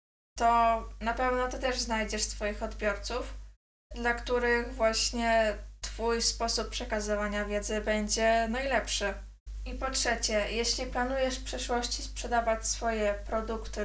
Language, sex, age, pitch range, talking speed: Polish, female, 20-39, 210-235 Hz, 115 wpm